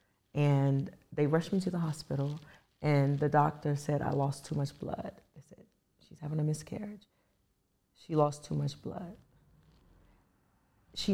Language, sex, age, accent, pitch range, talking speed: English, female, 30-49, American, 140-180 Hz, 150 wpm